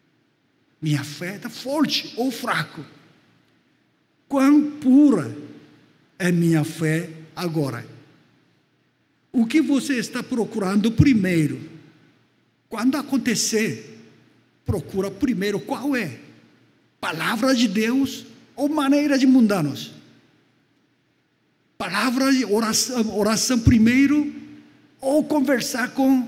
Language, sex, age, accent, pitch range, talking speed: Portuguese, male, 60-79, Brazilian, 160-255 Hz, 90 wpm